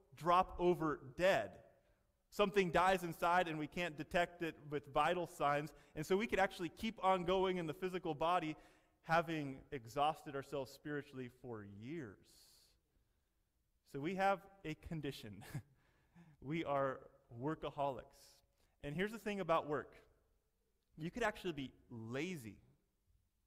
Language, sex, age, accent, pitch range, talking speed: English, male, 30-49, American, 130-175 Hz, 130 wpm